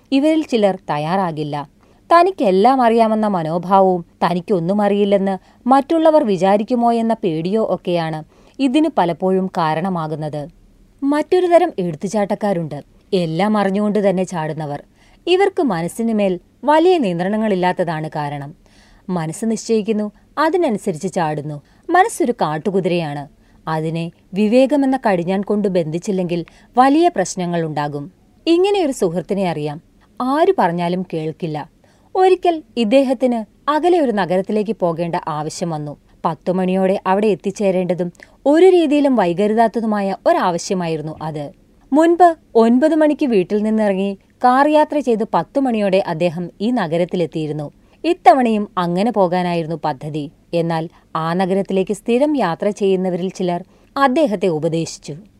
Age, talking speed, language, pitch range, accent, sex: 30-49, 95 wpm, Malayalam, 175-245 Hz, native, female